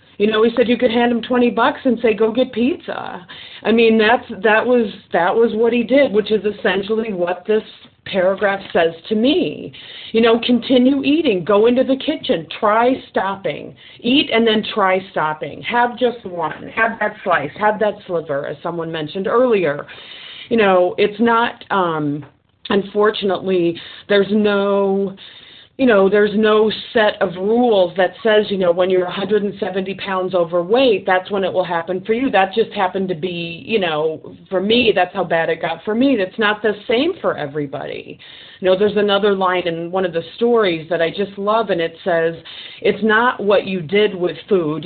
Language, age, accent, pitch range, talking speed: English, 40-59, American, 175-225 Hz, 185 wpm